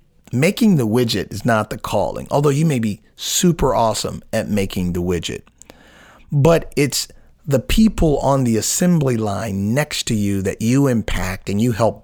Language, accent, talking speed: English, American, 170 wpm